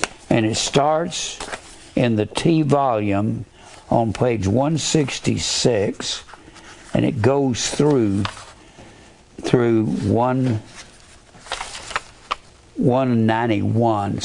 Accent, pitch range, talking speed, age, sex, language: American, 115-155 Hz, 70 wpm, 60-79, male, English